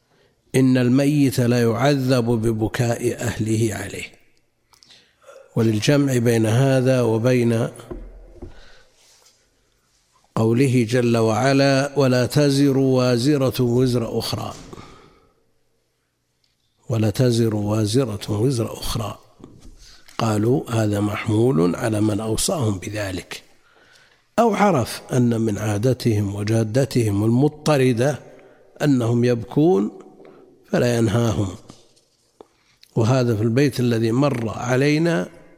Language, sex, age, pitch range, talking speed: Arabic, male, 50-69, 110-135 Hz, 80 wpm